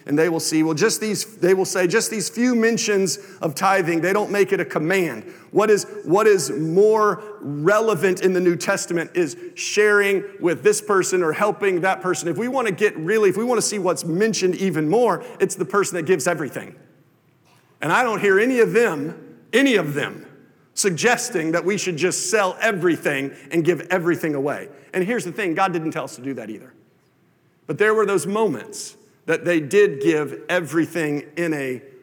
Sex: male